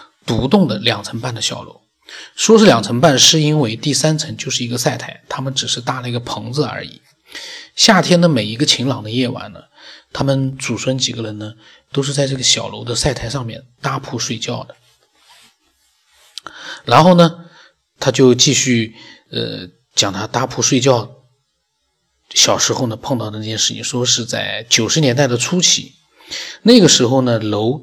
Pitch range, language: 115-150 Hz, Chinese